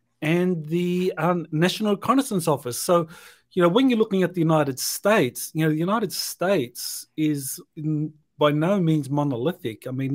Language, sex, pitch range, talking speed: English, male, 140-175 Hz, 165 wpm